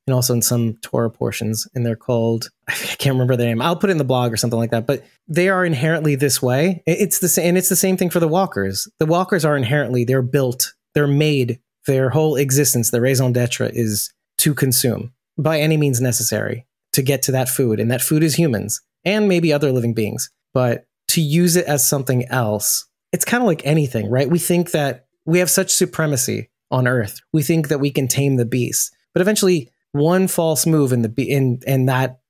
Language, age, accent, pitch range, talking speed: English, 30-49, American, 125-165 Hz, 215 wpm